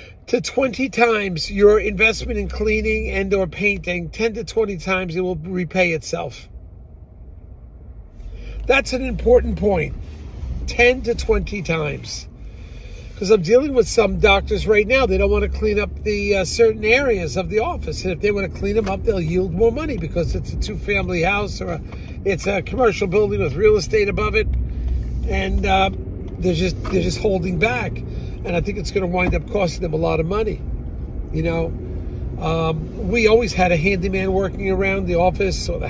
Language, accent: English, American